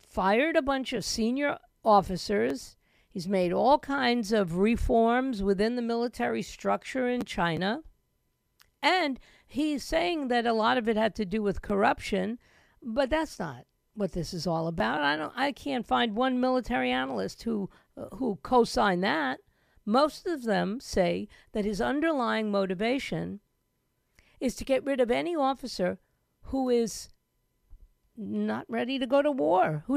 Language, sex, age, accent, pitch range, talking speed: English, female, 50-69, American, 210-275 Hz, 150 wpm